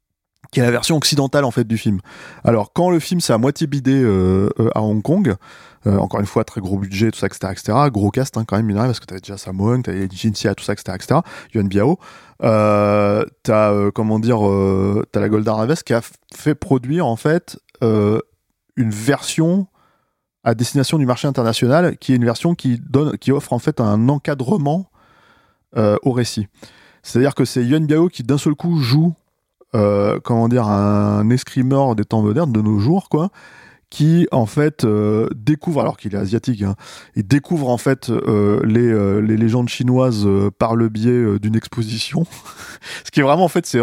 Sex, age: male, 20-39